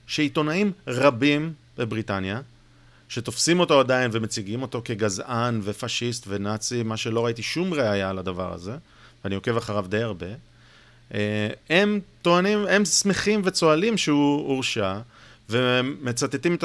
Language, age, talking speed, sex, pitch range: Hebrew, 30-49, 120 wpm, male, 115-165 Hz